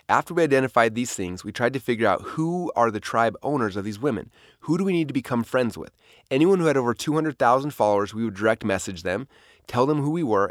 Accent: American